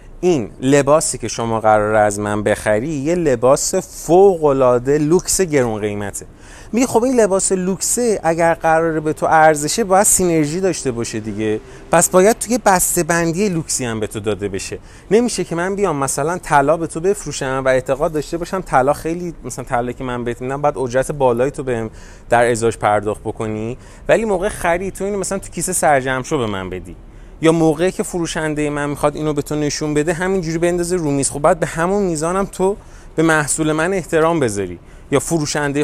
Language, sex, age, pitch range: Persian, male, 30-49, 130-185 Hz